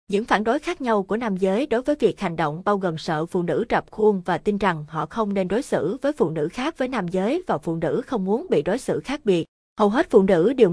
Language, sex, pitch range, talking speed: Vietnamese, female, 175-225 Hz, 280 wpm